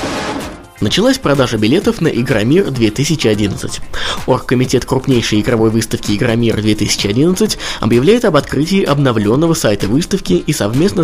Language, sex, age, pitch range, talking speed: Russian, male, 20-39, 110-155 Hz, 100 wpm